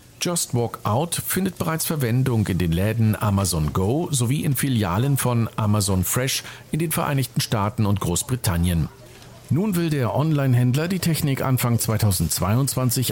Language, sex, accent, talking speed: German, male, German, 140 wpm